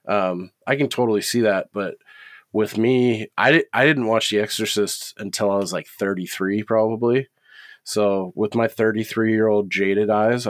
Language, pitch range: English, 95-115 Hz